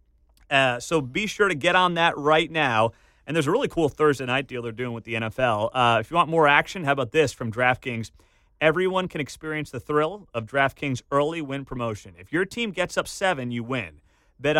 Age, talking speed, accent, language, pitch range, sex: 30-49, 220 wpm, American, English, 125-170 Hz, male